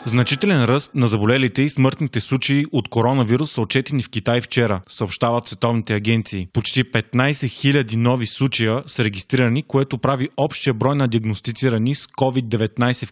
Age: 20-39